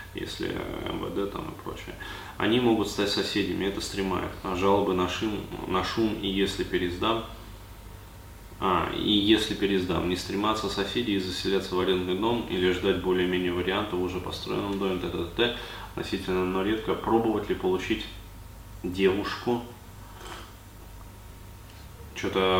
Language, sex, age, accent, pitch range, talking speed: Russian, male, 20-39, native, 90-100 Hz, 125 wpm